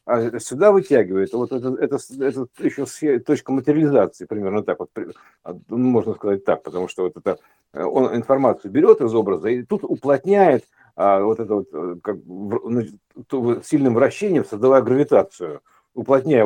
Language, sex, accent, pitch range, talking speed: Russian, male, native, 105-145 Hz, 140 wpm